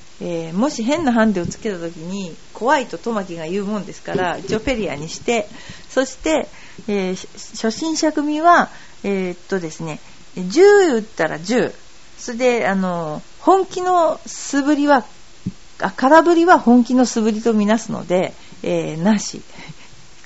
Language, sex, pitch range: Japanese, female, 180-245 Hz